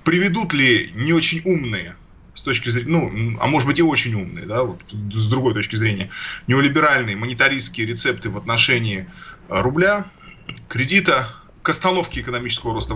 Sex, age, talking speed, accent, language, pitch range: male, 20-39, 150 wpm, native, Russian, 110-145 Hz